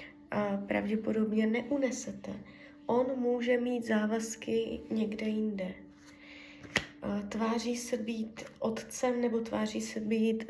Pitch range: 200-230 Hz